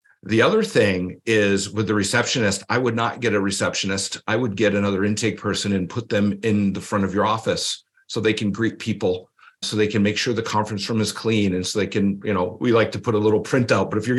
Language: English